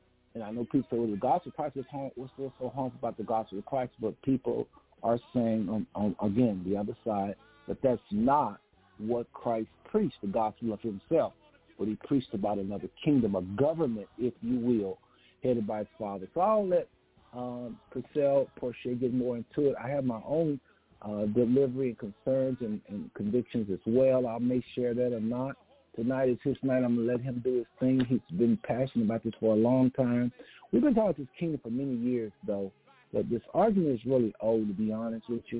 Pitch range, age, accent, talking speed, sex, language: 110-130 Hz, 50-69, American, 210 wpm, male, English